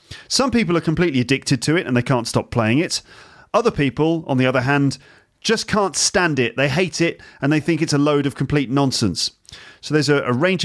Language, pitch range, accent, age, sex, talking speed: English, 120-155 Hz, British, 30-49, male, 225 wpm